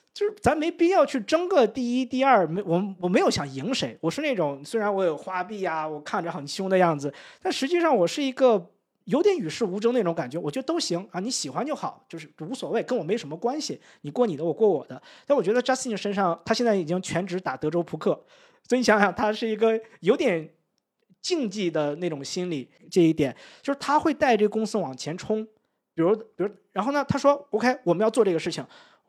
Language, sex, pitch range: Chinese, male, 165-245 Hz